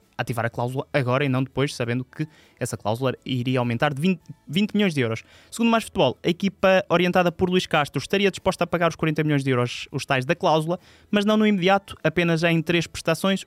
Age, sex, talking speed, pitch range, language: 20-39, male, 215 wpm, 130-165 Hz, Portuguese